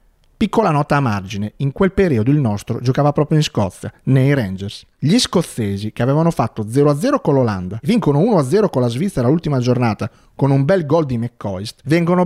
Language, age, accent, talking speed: Italian, 40-59, native, 180 wpm